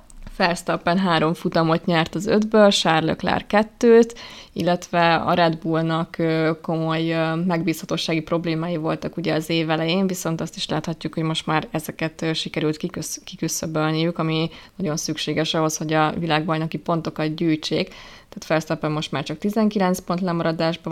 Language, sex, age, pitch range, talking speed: Hungarian, female, 20-39, 160-175 Hz, 130 wpm